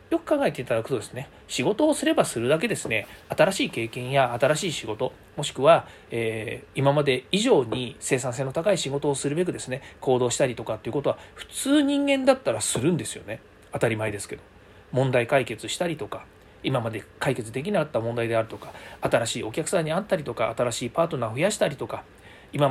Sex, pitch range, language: male, 120-180 Hz, Japanese